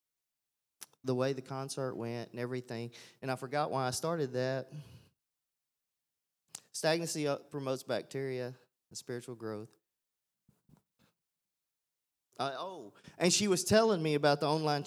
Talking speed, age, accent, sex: 120 wpm, 30-49, American, male